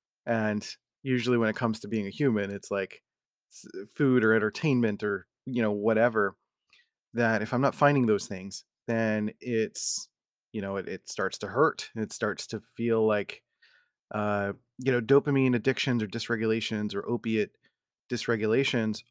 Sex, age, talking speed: male, 30-49, 155 wpm